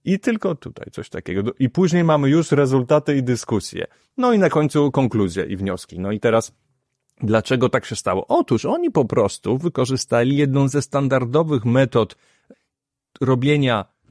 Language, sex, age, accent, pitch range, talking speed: Polish, male, 30-49, native, 120-145 Hz, 155 wpm